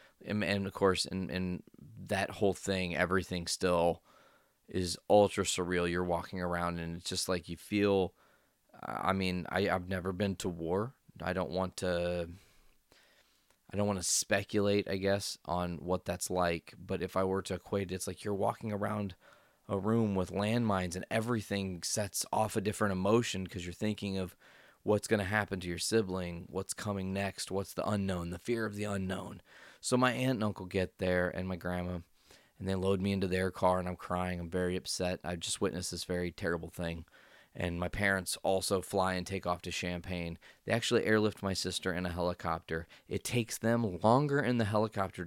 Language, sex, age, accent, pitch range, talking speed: English, male, 20-39, American, 90-100 Hz, 190 wpm